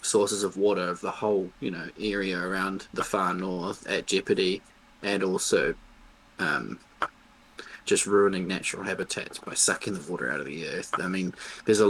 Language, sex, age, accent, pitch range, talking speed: English, male, 20-39, Australian, 95-110 Hz, 170 wpm